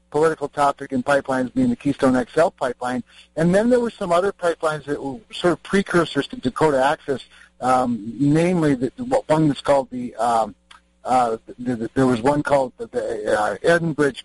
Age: 60-79